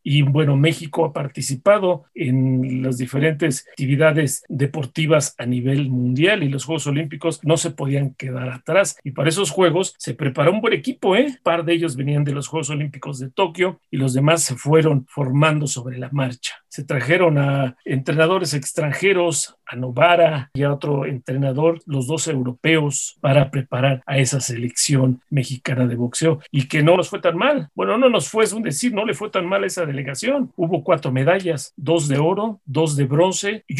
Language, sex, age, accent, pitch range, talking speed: Spanish, male, 40-59, Mexican, 135-170 Hz, 190 wpm